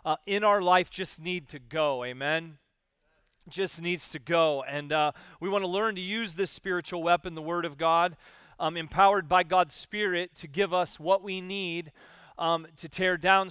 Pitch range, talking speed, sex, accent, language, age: 160-195 Hz, 190 wpm, male, American, English, 30-49